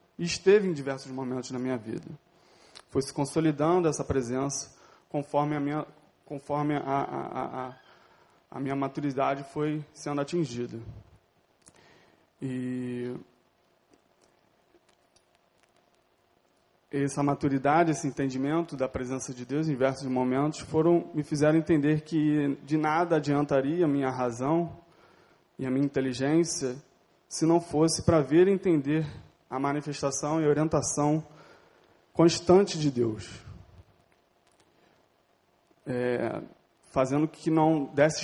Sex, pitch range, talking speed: male, 130-155 Hz, 110 wpm